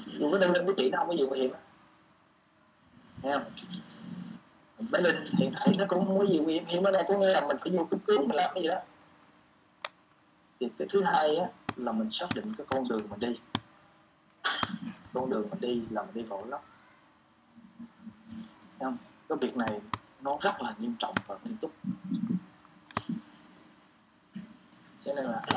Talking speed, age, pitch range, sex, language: 130 wpm, 20-39, 130-200 Hz, male, Vietnamese